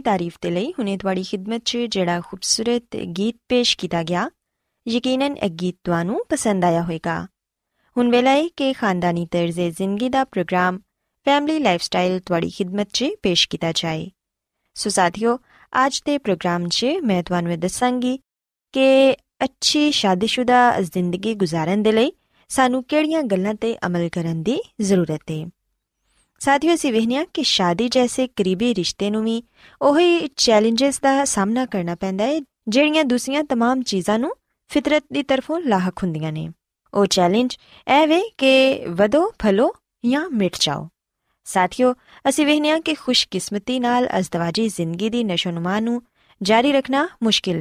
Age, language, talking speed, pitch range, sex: 20-39, Punjabi, 135 wpm, 180-265 Hz, female